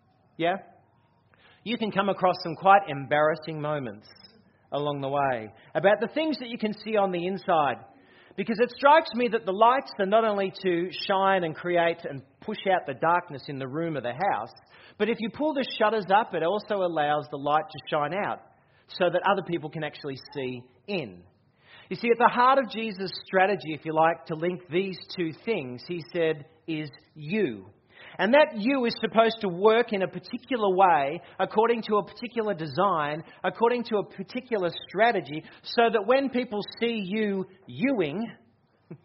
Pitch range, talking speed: 150-215 Hz, 180 wpm